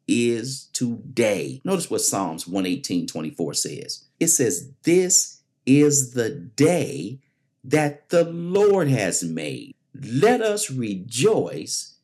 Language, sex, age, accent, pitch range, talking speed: English, male, 50-69, American, 130-155 Hz, 125 wpm